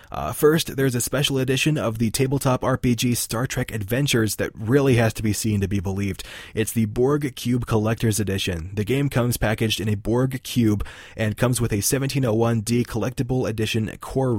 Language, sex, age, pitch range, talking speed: English, male, 20-39, 105-125 Hz, 185 wpm